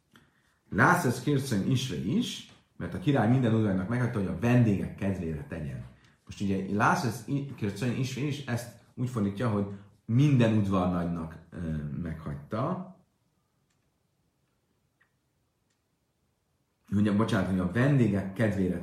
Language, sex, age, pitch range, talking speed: Hungarian, male, 40-59, 95-130 Hz, 100 wpm